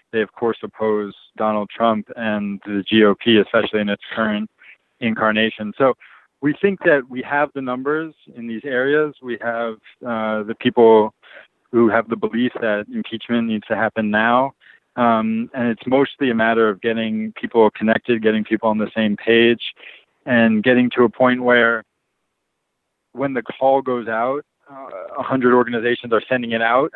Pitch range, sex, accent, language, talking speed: 110-120 Hz, male, American, English, 165 wpm